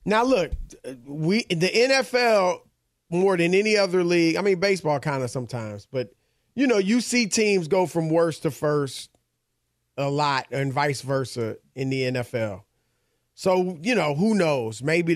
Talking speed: 160 wpm